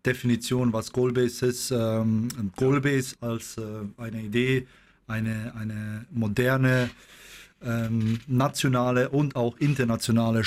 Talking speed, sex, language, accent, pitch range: 85 wpm, male, German, German, 110-120 Hz